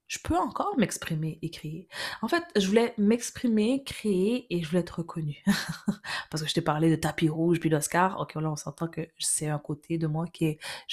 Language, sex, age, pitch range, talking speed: French, female, 20-39, 155-205 Hz, 220 wpm